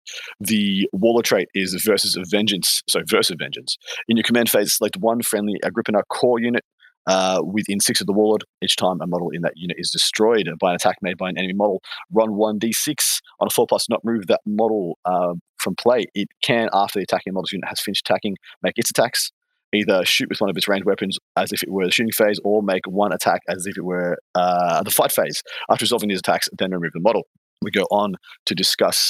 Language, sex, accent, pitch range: English, male, Australian, 95-115 Hz